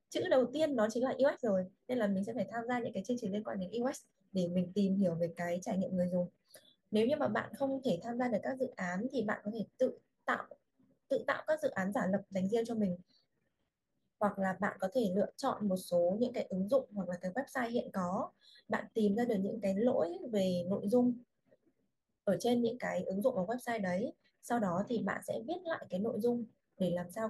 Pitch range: 185-245 Hz